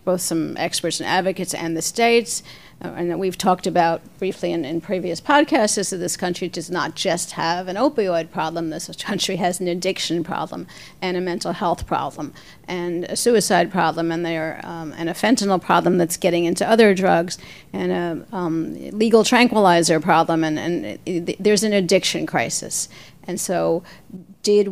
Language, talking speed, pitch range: English, 180 wpm, 165-195 Hz